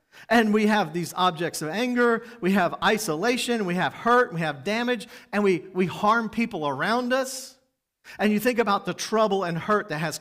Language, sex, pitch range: English, male, 165-220 Hz